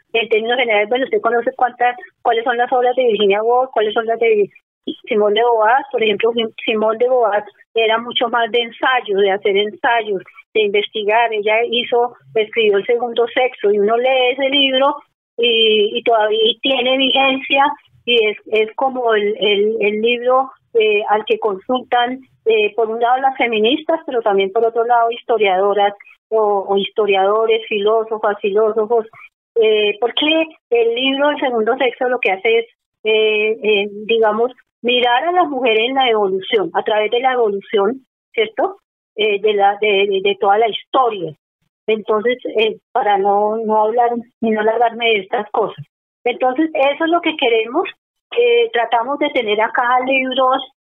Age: 30-49